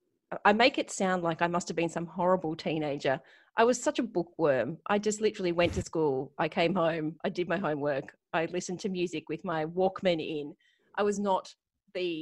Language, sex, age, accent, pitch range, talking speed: English, female, 30-49, Australian, 165-205 Hz, 205 wpm